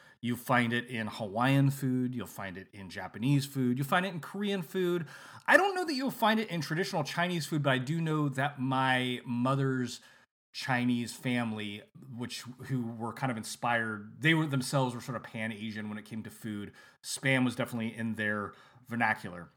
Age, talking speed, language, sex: 30-49, 190 wpm, English, male